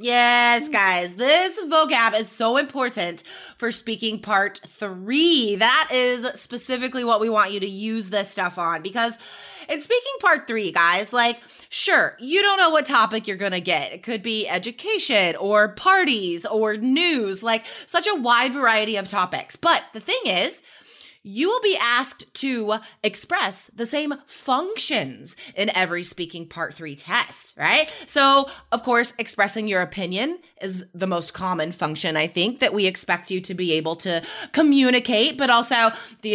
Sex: female